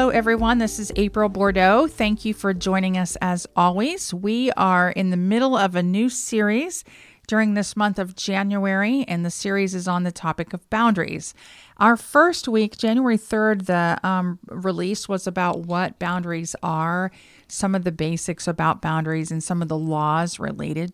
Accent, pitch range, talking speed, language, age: American, 170-210 Hz, 175 wpm, English, 40-59